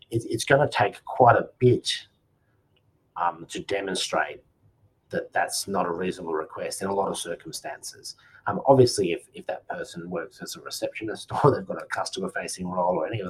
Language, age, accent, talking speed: English, 30-49, Australian, 180 wpm